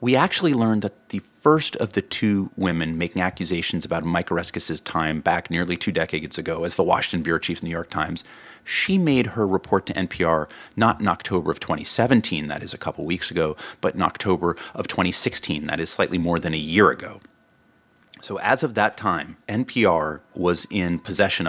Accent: American